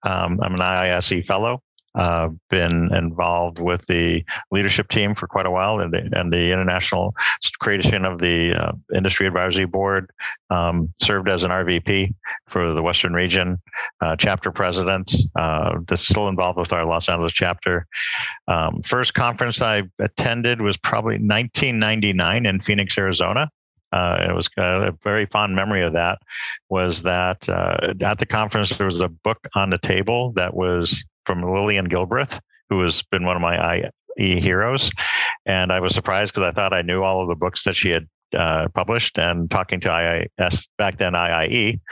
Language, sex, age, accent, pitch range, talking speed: English, male, 50-69, American, 90-100 Hz, 170 wpm